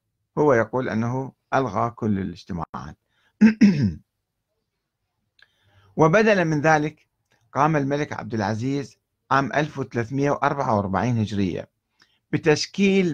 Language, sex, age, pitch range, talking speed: Arabic, male, 50-69, 115-155 Hz, 80 wpm